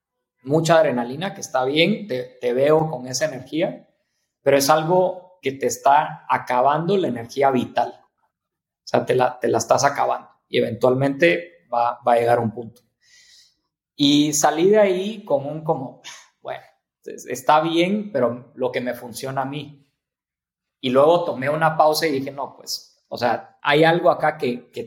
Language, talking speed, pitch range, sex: Spanish, 170 wpm, 125-165 Hz, male